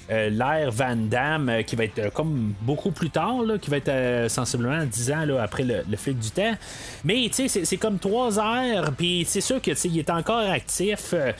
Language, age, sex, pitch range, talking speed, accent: French, 30-49, male, 140-190 Hz, 225 wpm, Canadian